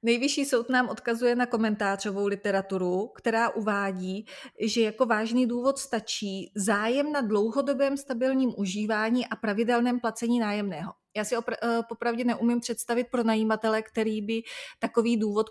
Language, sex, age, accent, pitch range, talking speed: Czech, female, 30-49, native, 200-235 Hz, 135 wpm